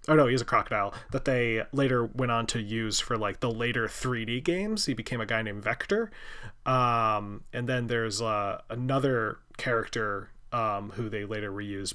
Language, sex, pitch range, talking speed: English, male, 110-130 Hz, 180 wpm